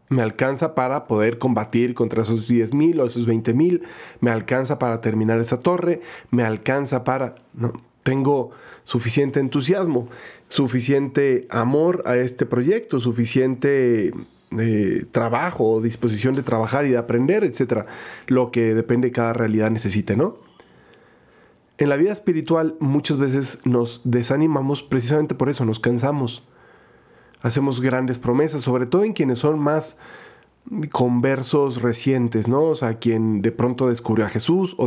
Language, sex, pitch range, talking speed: Spanish, male, 115-150 Hz, 140 wpm